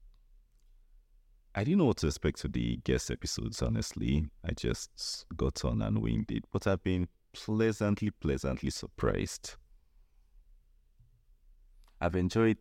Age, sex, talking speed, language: 30-49, male, 125 wpm, English